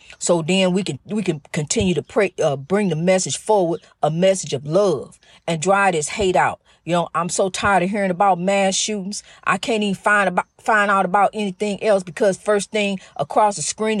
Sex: female